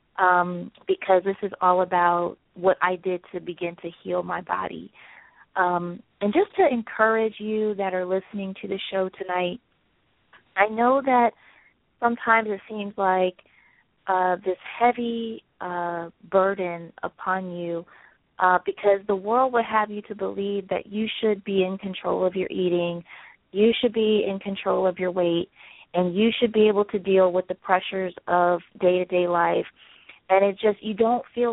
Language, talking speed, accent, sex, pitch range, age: English, 165 wpm, American, female, 185-215 Hz, 30-49